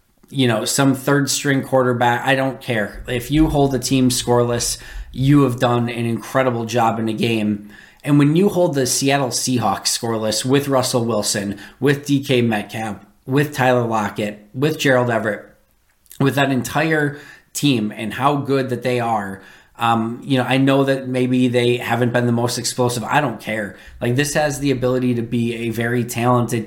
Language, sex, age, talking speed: English, male, 20-39, 180 wpm